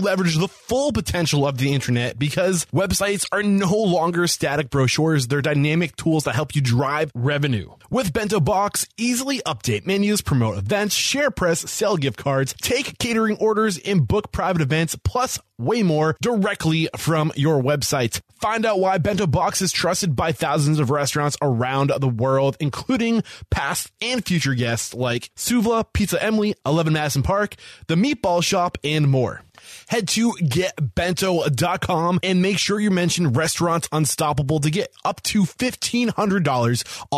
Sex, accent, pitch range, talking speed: male, American, 130-185 Hz, 155 wpm